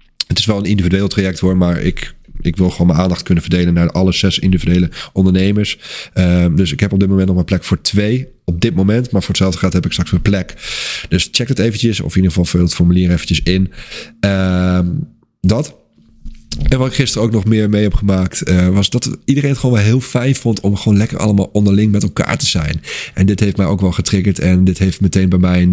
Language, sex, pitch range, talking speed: Dutch, male, 90-110 Hz, 240 wpm